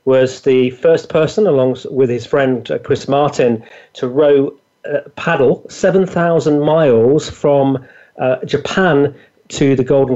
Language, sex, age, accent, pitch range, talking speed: English, male, 40-59, British, 130-175 Hz, 130 wpm